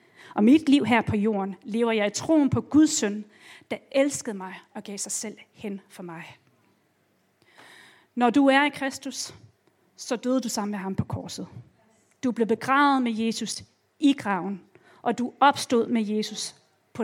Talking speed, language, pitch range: 175 wpm, Danish, 210-270 Hz